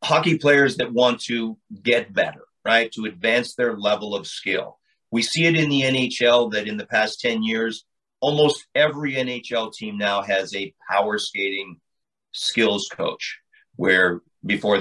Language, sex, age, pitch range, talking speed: English, male, 40-59, 110-135 Hz, 160 wpm